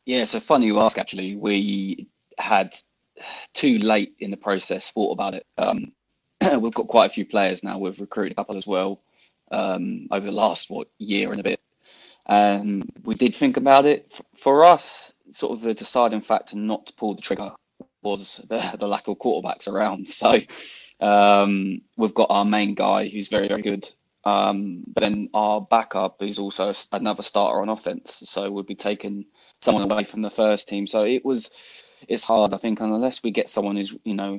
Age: 20-39